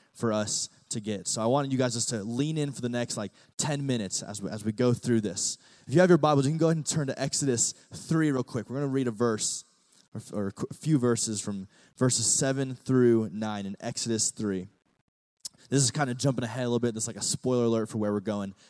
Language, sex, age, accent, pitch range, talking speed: English, male, 20-39, American, 110-135 Hz, 255 wpm